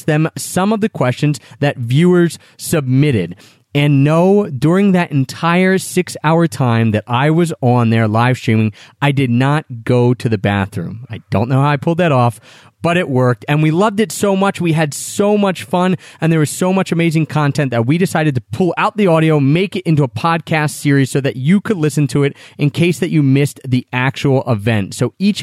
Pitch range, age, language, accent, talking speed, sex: 125-165 Hz, 30-49, English, American, 210 wpm, male